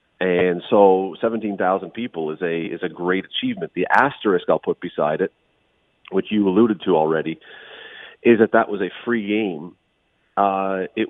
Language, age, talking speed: English, 40-59, 160 wpm